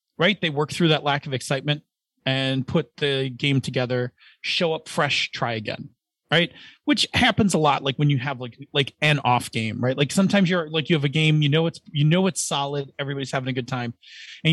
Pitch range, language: 135-185 Hz, English